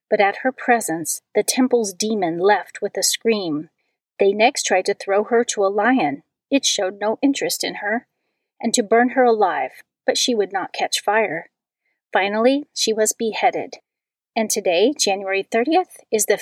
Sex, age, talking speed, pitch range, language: female, 40-59, 170 wpm, 205-260 Hz, English